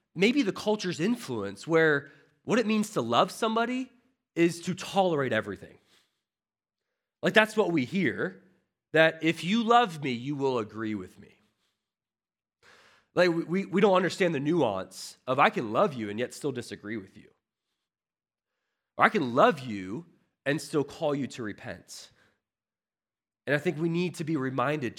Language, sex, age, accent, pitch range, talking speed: English, male, 30-49, American, 125-200 Hz, 160 wpm